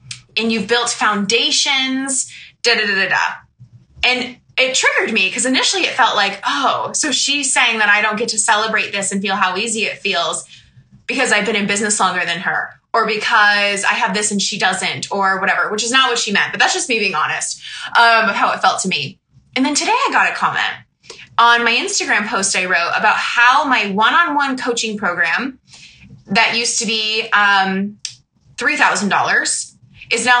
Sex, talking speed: female, 195 wpm